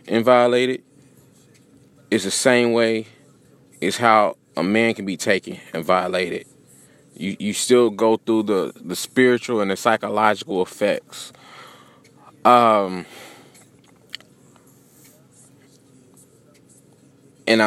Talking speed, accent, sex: 100 wpm, American, male